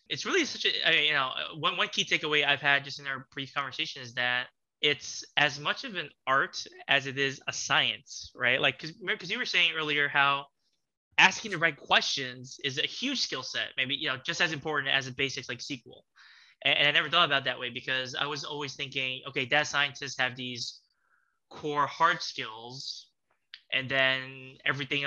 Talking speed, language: 200 wpm, English